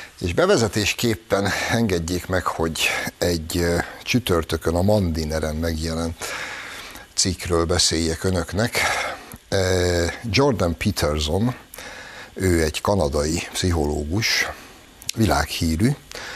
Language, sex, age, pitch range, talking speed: Hungarian, male, 60-79, 85-105 Hz, 75 wpm